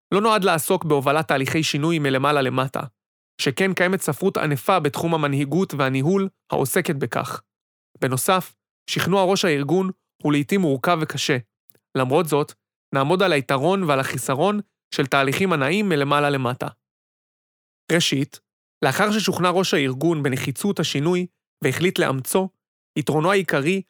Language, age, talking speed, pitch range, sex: Hebrew, 30-49, 120 wpm, 140-185 Hz, male